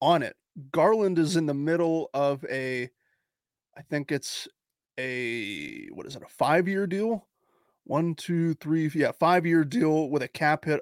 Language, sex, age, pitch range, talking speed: English, male, 30-49, 150-185 Hz, 160 wpm